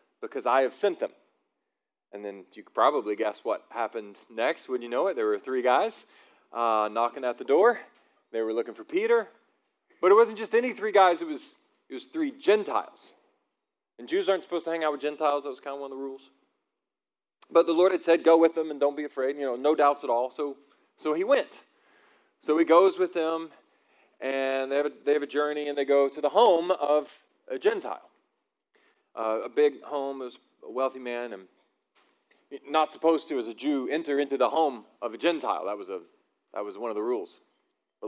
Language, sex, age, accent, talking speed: English, male, 40-59, American, 215 wpm